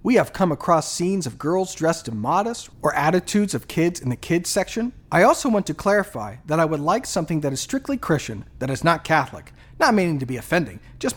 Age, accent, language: 40-59, American, English